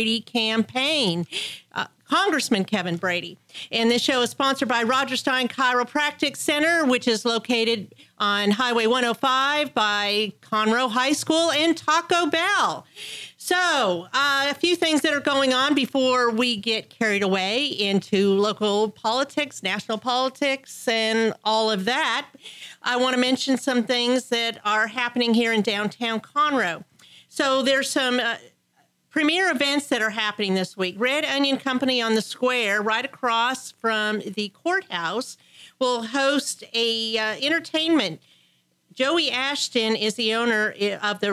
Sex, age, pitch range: female, 40-59, 215-270 Hz